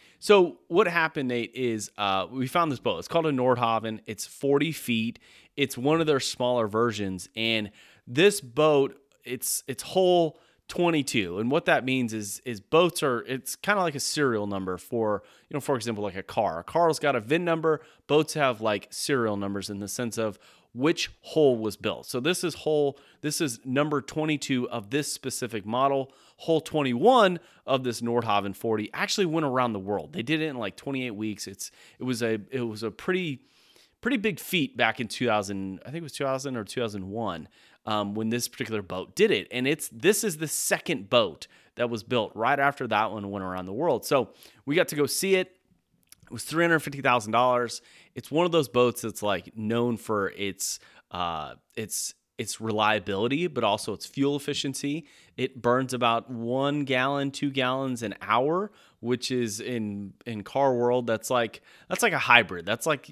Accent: American